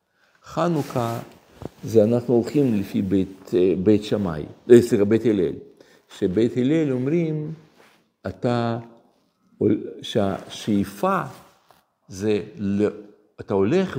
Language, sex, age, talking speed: Hebrew, male, 60-79, 80 wpm